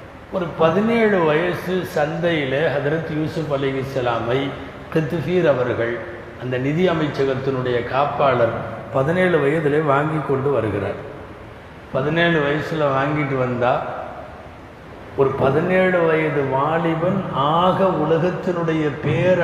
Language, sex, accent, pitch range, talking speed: Tamil, male, native, 135-165 Hz, 95 wpm